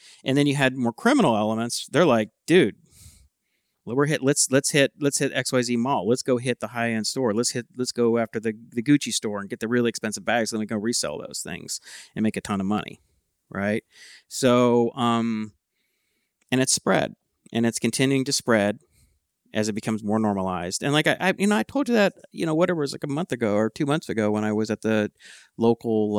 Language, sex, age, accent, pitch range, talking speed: English, male, 40-59, American, 100-125 Hz, 225 wpm